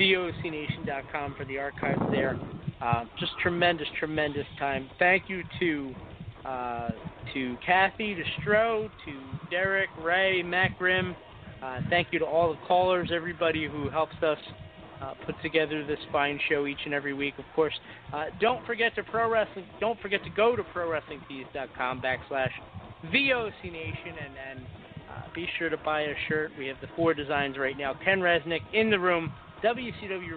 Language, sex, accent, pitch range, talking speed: English, male, American, 135-170 Hz, 160 wpm